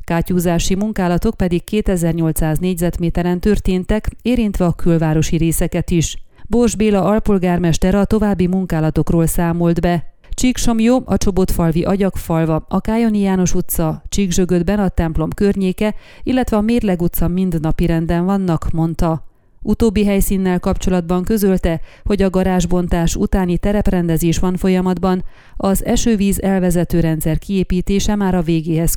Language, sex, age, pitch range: Hungarian, female, 30-49, 170-200 Hz